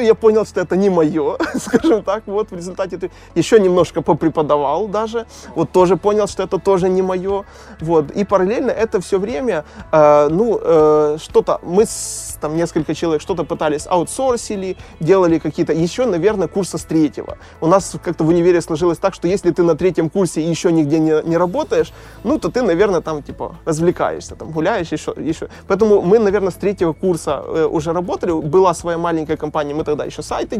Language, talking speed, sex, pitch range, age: Russian, 185 wpm, male, 155-185 Hz, 20-39